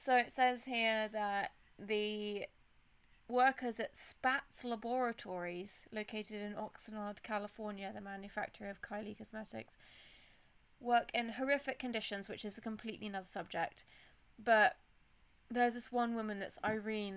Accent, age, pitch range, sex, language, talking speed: British, 30-49, 210-245 Hz, female, English, 125 wpm